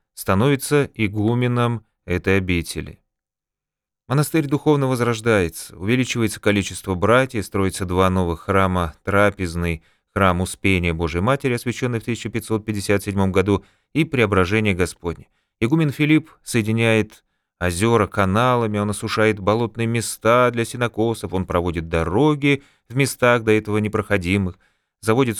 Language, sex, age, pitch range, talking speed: Russian, male, 30-49, 95-120 Hz, 110 wpm